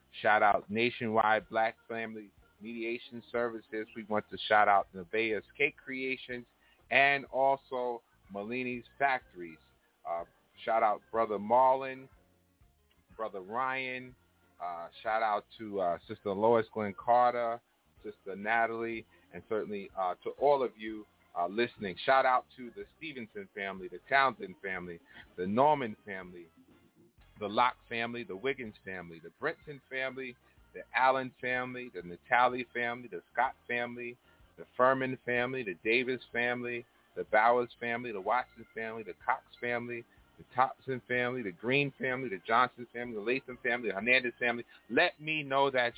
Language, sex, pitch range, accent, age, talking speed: English, male, 105-130 Hz, American, 30-49, 145 wpm